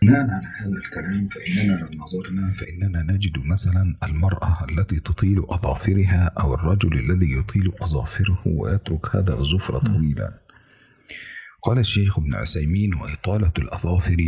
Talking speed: 120 wpm